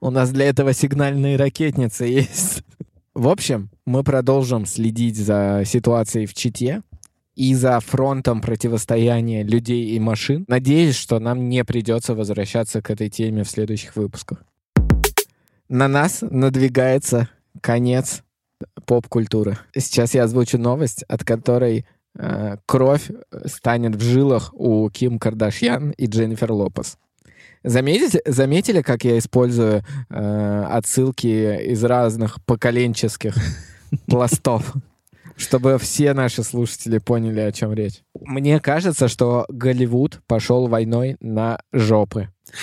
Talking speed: 115 wpm